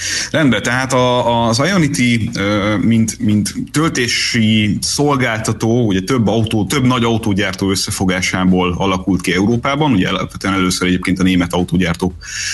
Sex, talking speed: male, 120 wpm